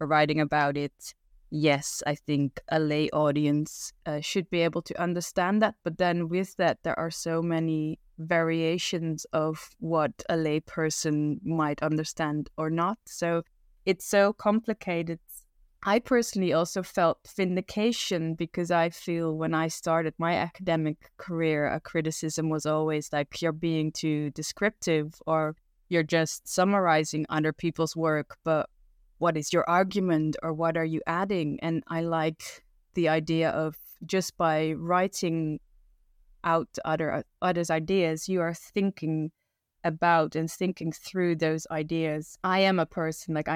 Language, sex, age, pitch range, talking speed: English, female, 20-39, 155-170 Hz, 145 wpm